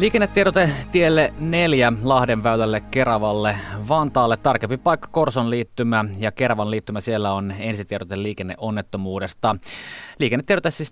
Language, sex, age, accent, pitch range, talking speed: Finnish, male, 20-39, native, 100-125 Hz, 110 wpm